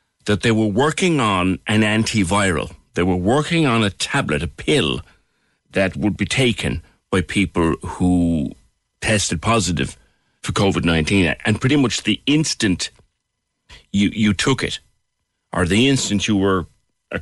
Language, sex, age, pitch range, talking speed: English, male, 60-79, 90-115 Hz, 145 wpm